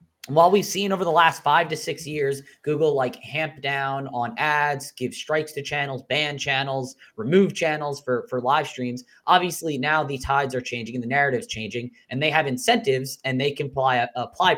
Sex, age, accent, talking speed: male, 20-39, American, 200 wpm